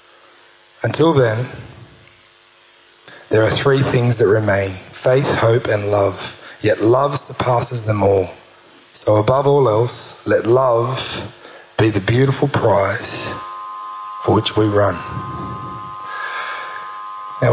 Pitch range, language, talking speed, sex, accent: 110-135 Hz, English, 110 wpm, male, Australian